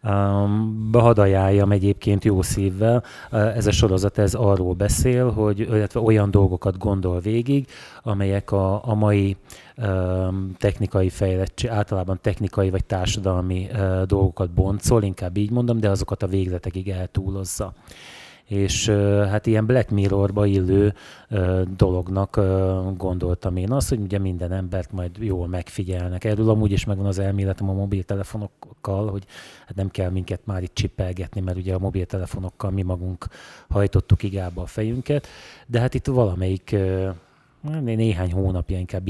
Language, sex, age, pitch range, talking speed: Hungarian, male, 30-49, 95-110 Hz, 140 wpm